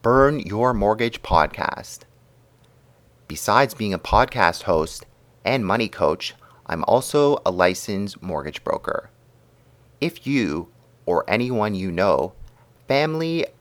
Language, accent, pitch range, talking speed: English, American, 95-135 Hz, 110 wpm